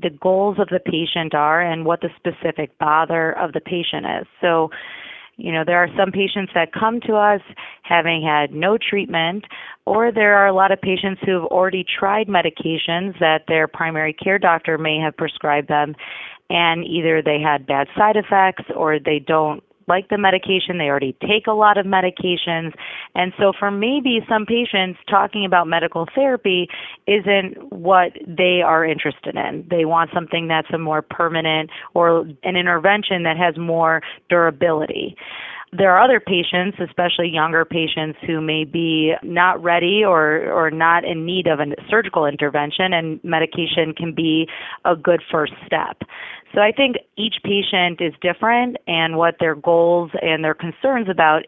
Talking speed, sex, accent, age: 170 wpm, female, American, 30-49